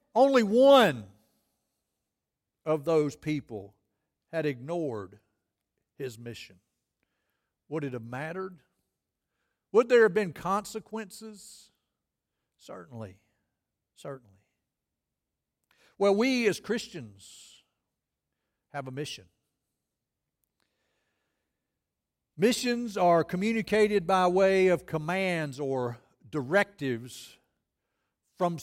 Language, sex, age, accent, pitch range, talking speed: English, male, 60-79, American, 125-210 Hz, 80 wpm